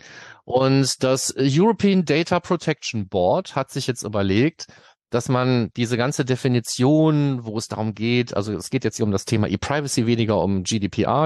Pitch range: 105-145 Hz